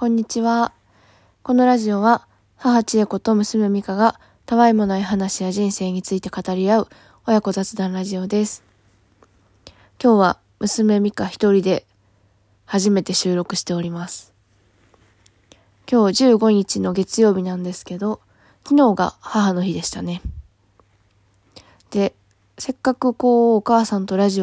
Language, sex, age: Japanese, female, 20-39